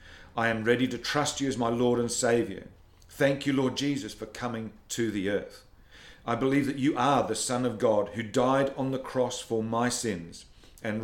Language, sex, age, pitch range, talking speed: English, male, 50-69, 105-125 Hz, 205 wpm